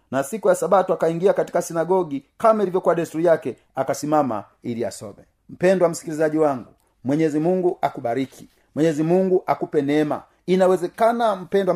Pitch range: 135-185 Hz